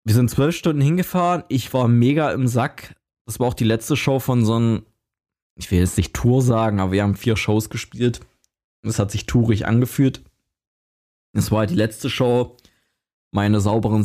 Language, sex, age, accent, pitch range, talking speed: German, male, 20-39, German, 105-125 Hz, 190 wpm